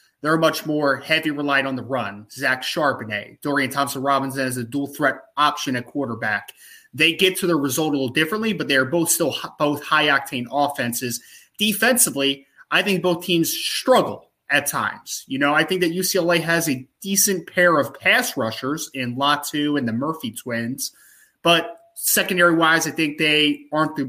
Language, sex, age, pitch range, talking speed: English, male, 20-39, 140-175 Hz, 180 wpm